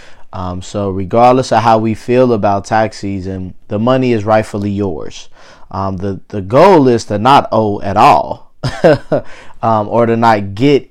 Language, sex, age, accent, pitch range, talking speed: English, male, 20-39, American, 95-110 Hz, 165 wpm